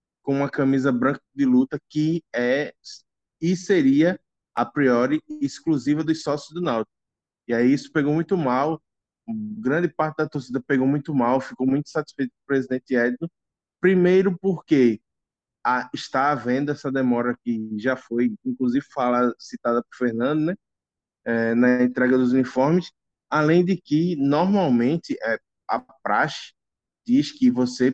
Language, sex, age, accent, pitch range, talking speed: Portuguese, male, 20-39, Brazilian, 125-170 Hz, 145 wpm